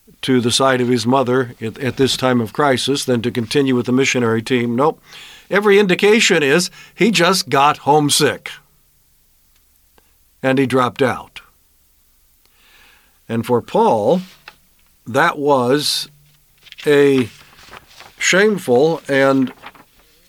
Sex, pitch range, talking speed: male, 125-155 Hz, 110 wpm